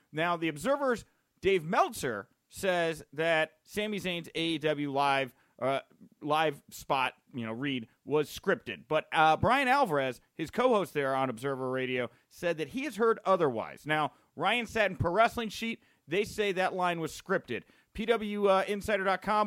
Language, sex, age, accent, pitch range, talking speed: English, male, 40-59, American, 145-205 Hz, 150 wpm